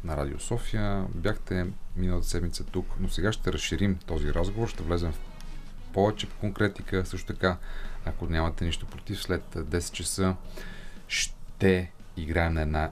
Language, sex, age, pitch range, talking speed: Bulgarian, male, 30-49, 80-105 Hz, 145 wpm